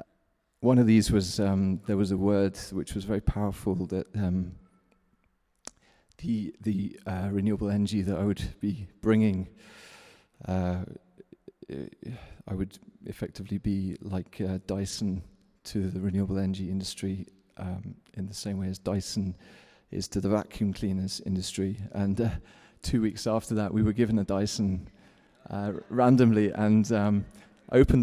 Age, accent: 30-49, British